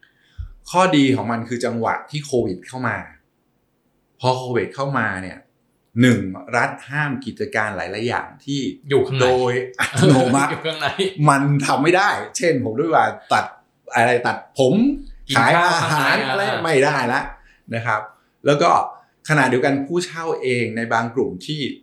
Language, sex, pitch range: Thai, male, 110-140 Hz